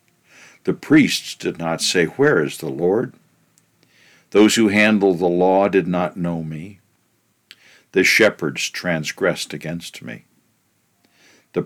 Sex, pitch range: male, 75-100 Hz